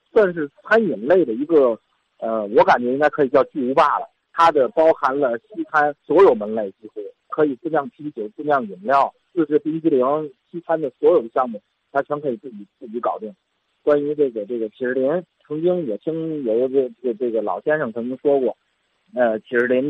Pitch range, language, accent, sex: 135-190 Hz, Chinese, native, male